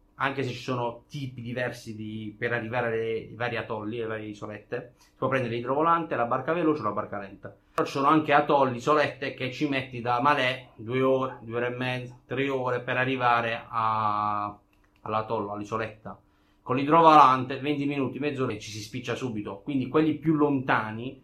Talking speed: 185 wpm